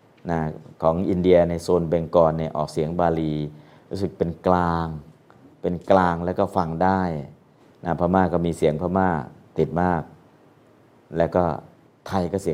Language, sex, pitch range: Thai, male, 80-90 Hz